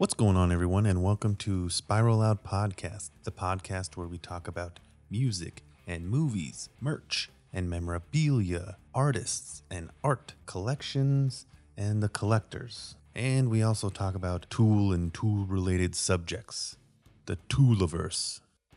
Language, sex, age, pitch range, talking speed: English, male, 30-49, 90-110 Hz, 130 wpm